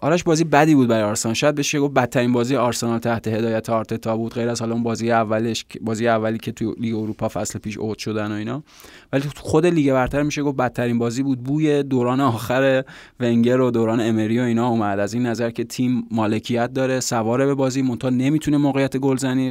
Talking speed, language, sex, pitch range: 200 wpm, Persian, male, 115-130 Hz